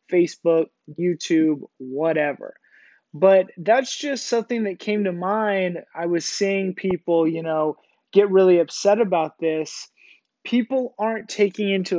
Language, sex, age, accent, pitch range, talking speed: English, male, 20-39, American, 155-190 Hz, 130 wpm